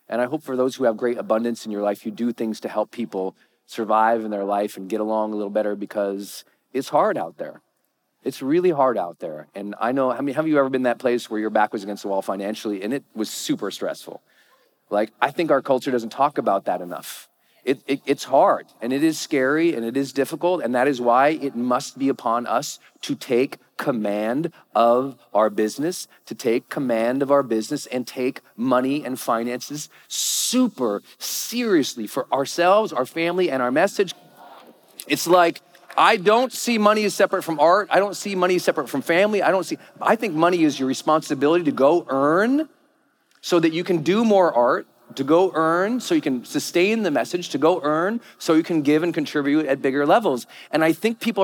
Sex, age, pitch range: male, 40-59, 125-190 Hz